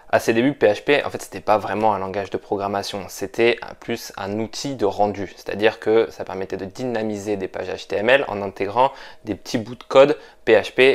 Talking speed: 210 wpm